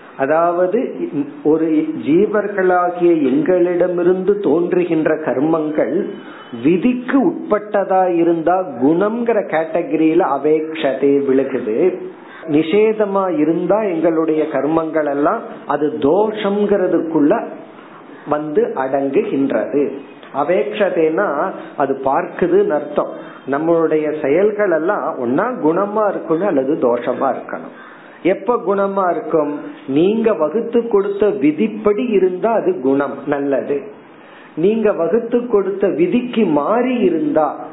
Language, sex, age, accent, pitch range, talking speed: Tamil, male, 50-69, native, 155-215 Hz, 60 wpm